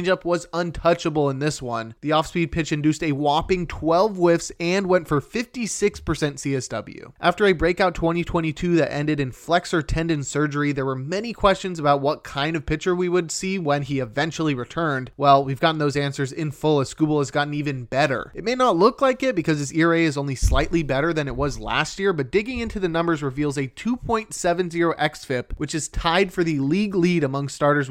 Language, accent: English, American